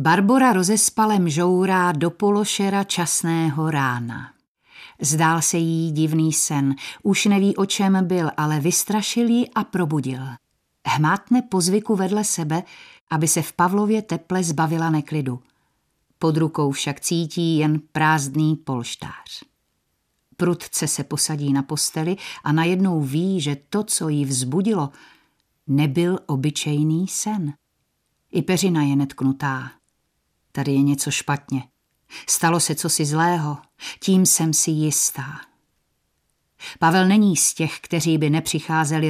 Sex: female